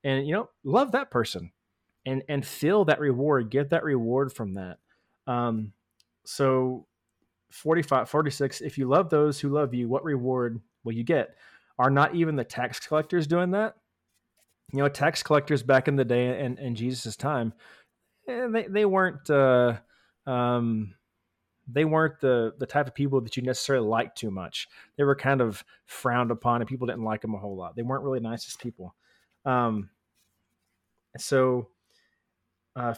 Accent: American